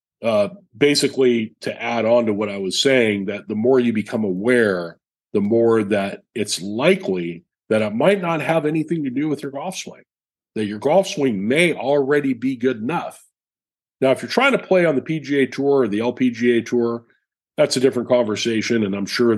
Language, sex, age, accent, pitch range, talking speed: English, male, 40-59, American, 110-145 Hz, 195 wpm